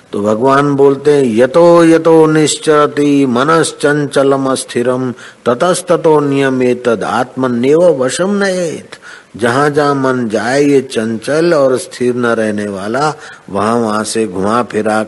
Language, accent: Hindi, native